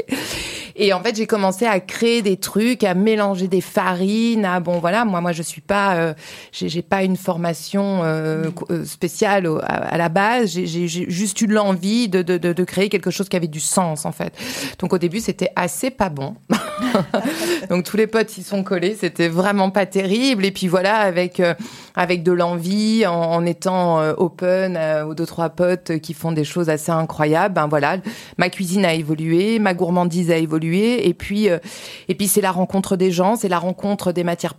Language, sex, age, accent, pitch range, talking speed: French, female, 30-49, French, 170-205 Hz, 200 wpm